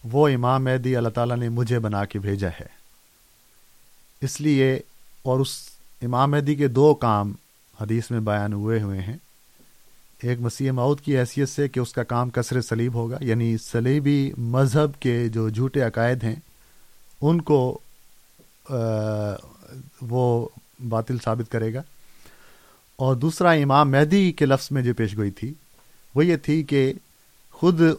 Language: Urdu